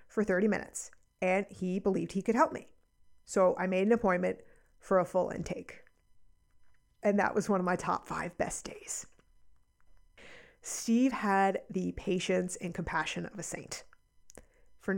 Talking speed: 155 wpm